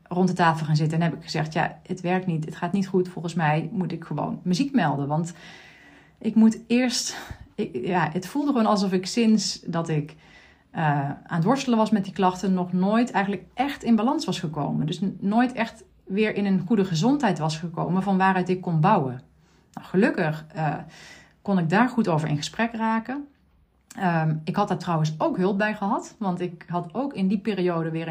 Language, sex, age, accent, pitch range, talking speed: Dutch, female, 30-49, Dutch, 165-210 Hz, 205 wpm